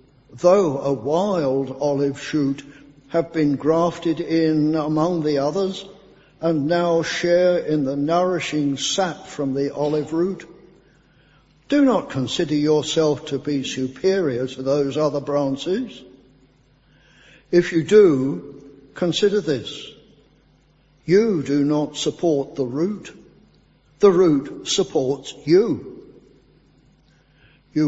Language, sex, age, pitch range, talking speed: English, male, 60-79, 145-175 Hz, 110 wpm